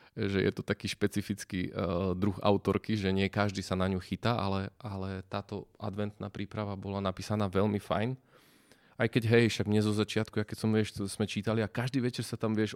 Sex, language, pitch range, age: male, Slovak, 100-120 Hz, 20-39